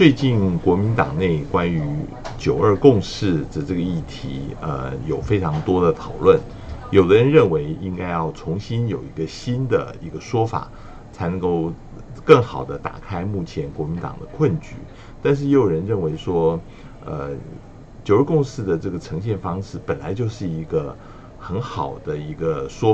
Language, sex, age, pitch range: Chinese, male, 60-79, 85-120 Hz